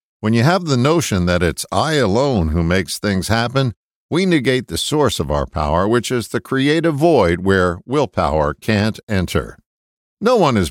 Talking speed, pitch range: 180 wpm, 90-135 Hz